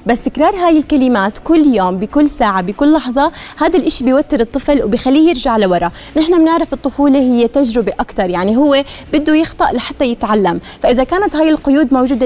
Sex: female